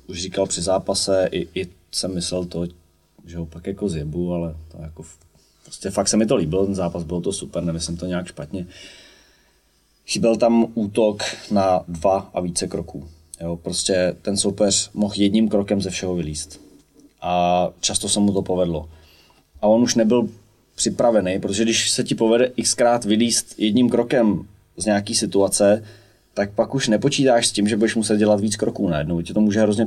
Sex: male